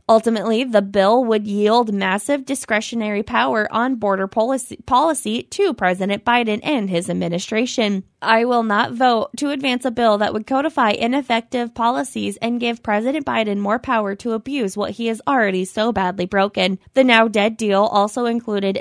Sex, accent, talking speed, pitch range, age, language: female, American, 160 wpm, 205-245 Hz, 20-39, English